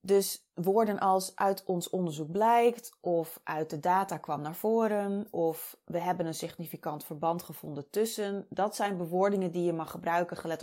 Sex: female